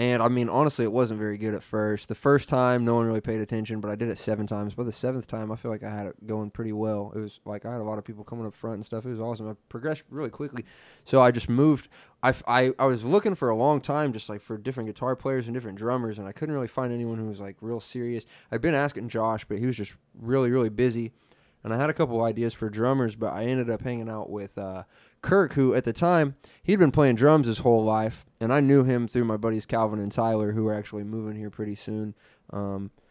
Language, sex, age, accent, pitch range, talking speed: English, male, 20-39, American, 105-125 Hz, 265 wpm